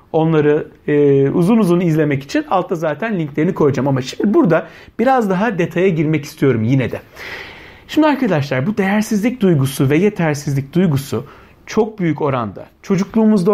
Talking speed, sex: 135 wpm, male